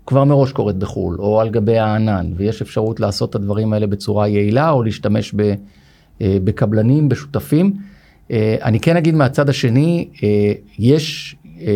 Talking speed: 135 wpm